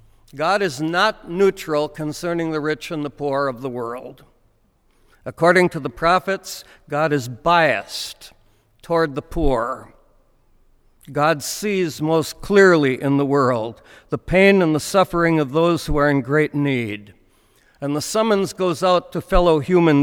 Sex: male